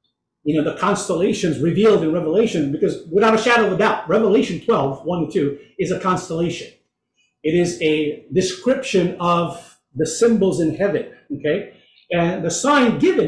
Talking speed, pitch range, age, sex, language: 155 wpm, 185-250 Hz, 50-69, male, English